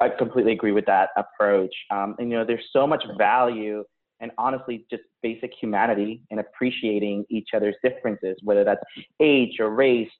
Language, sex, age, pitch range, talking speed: English, male, 30-49, 110-130 Hz, 170 wpm